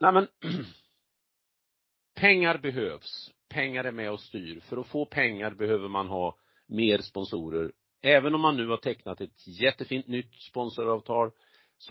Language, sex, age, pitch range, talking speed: Swedish, male, 40-59, 90-120 Hz, 145 wpm